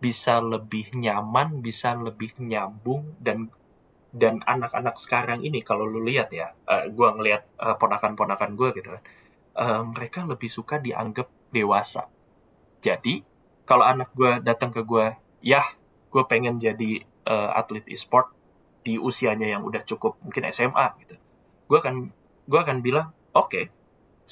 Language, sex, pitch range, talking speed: Indonesian, male, 110-125 Hz, 145 wpm